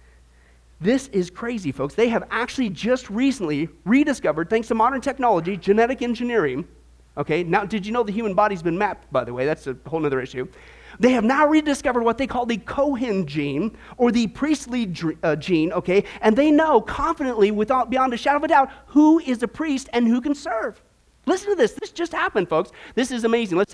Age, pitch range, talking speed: 40-59, 195-265 Hz, 205 wpm